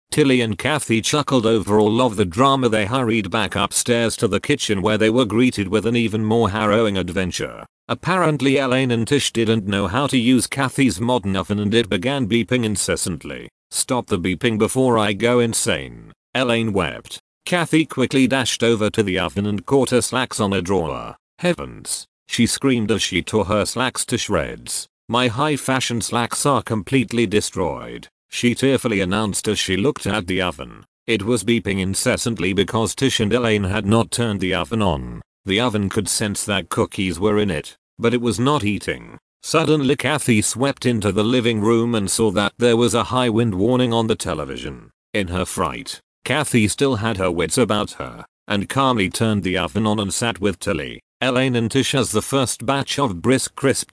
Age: 40-59